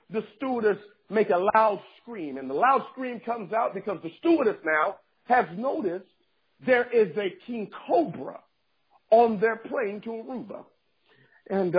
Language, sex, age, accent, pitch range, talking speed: English, male, 50-69, American, 220-300 Hz, 150 wpm